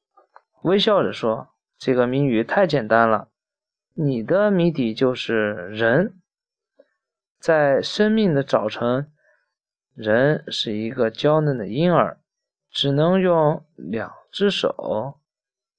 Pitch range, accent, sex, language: 125-185 Hz, native, male, Chinese